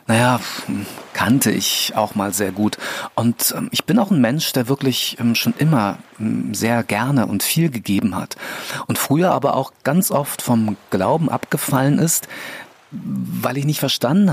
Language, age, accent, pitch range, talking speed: German, 40-59, German, 115-155 Hz, 155 wpm